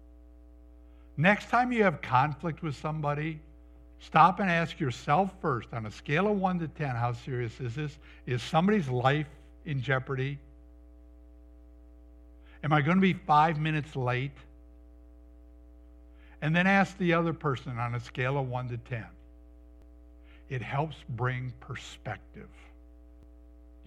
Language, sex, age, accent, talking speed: English, male, 60-79, American, 135 wpm